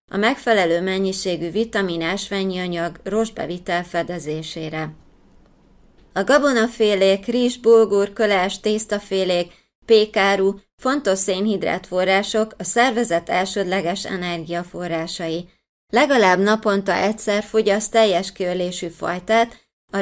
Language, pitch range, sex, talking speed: Hungarian, 180-215 Hz, female, 85 wpm